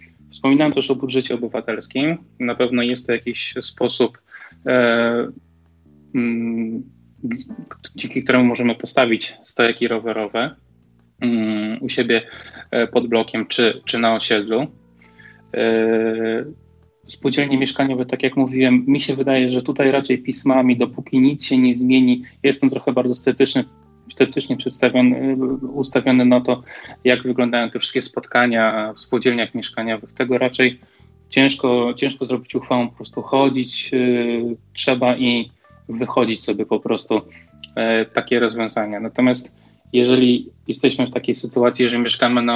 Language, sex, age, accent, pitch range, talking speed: Polish, male, 20-39, native, 115-130 Hz, 130 wpm